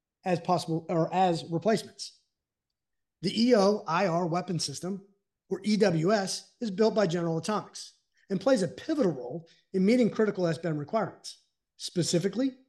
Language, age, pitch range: English, 30-49, 165-215 Hz